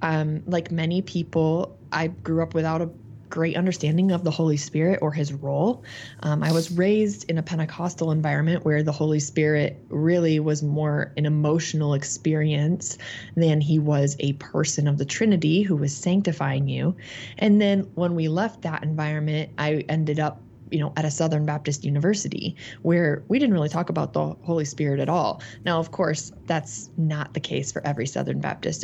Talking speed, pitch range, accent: 180 wpm, 150-170 Hz, American